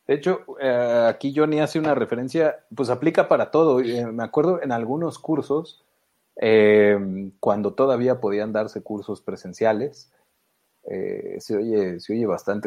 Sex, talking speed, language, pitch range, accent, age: male, 135 wpm, Spanish, 110-155 Hz, Mexican, 30-49